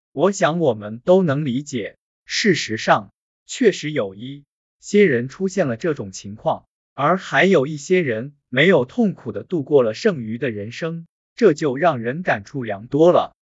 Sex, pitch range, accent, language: male, 120-180 Hz, native, Chinese